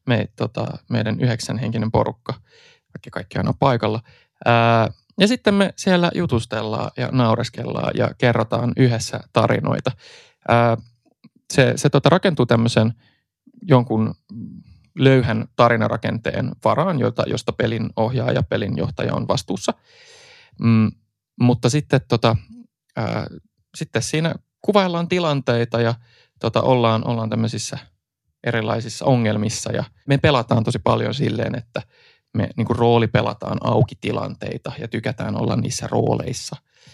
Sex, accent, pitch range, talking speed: male, native, 115-135 Hz, 105 wpm